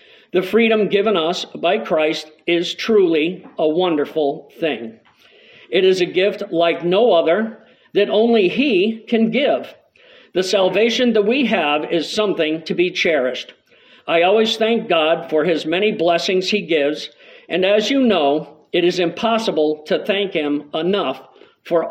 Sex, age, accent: male, 50-69, American